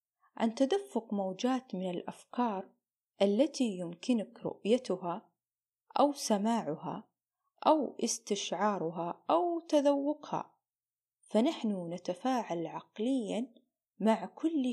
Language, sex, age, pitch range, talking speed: Arabic, female, 30-49, 195-265 Hz, 75 wpm